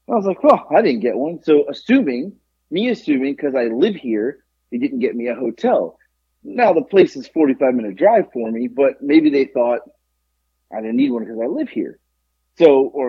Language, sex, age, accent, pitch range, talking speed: English, male, 30-49, American, 100-155 Hz, 215 wpm